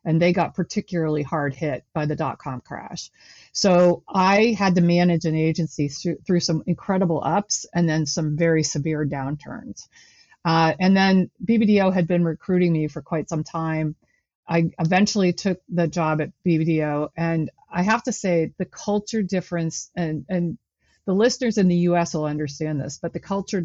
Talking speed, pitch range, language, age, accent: 175 wpm, 155-180 Hz, English, 40-59, American